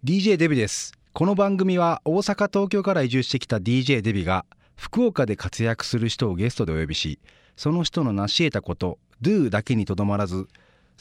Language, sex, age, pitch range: Japanese, male, 40-59, 100-160 Hz